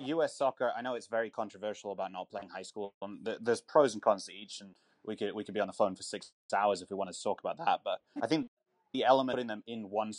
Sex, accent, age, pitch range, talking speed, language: male, British, 20-39, 105-140 Hz, 275 wpm, English